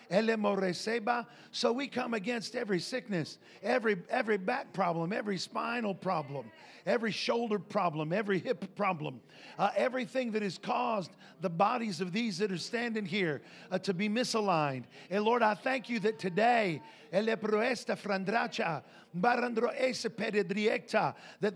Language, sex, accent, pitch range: English, male, American, 215-290 Hz